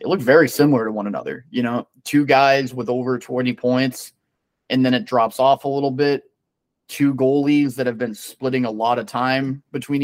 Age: 30-49